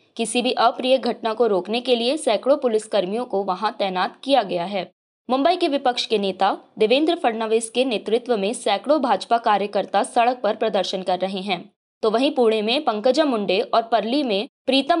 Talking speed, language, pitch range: 185 wpm, Hindi, 205-260 Hz